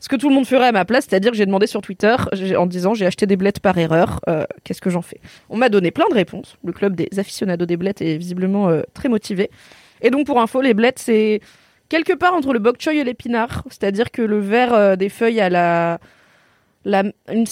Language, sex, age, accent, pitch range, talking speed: French, female, 20-39, French, 195-245 Hz, 245 wpm